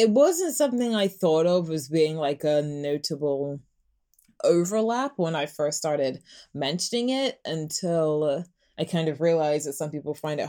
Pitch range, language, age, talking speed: 145-175 Hz, English, 20-39, 160 wpm